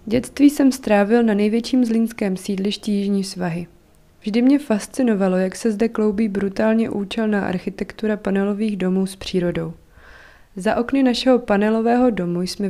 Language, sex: Czech, female